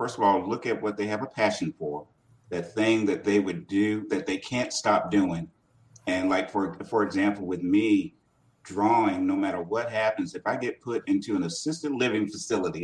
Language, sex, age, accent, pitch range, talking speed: English, male, 40-59, American, 105-150 Hz, 200 wpm